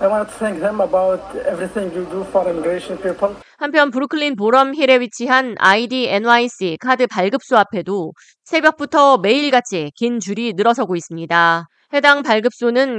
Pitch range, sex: 190-265 Hz, female